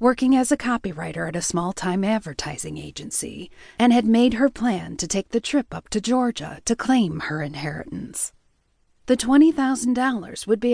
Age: 40-59